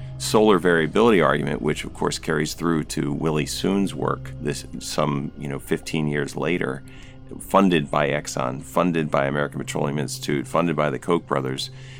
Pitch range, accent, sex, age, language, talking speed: 70-85 Hz, American, male, 40-59, English, 160 wpm